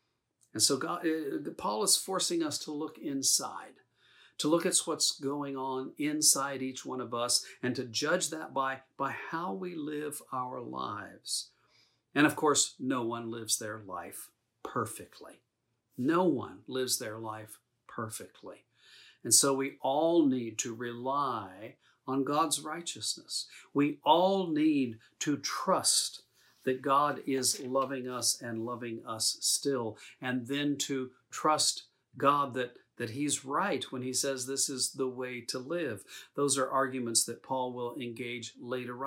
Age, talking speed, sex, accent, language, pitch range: 50-69, 150 wpm, male, American, English, 120-145 Hz